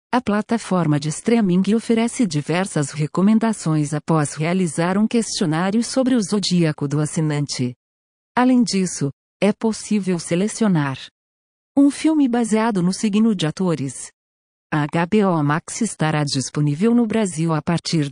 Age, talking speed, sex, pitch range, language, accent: 50-69, 125 wpm, female, 150-220 Hz, Portuguese, Brazilian